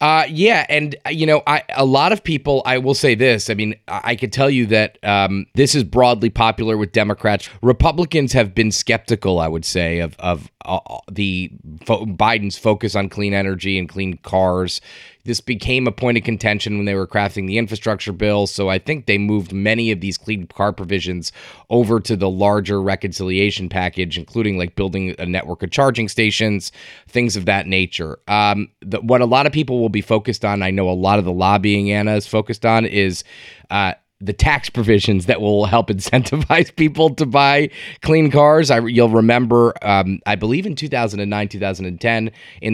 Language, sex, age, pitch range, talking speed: English, male, 30-49, 95-115 Hz, 200 wpm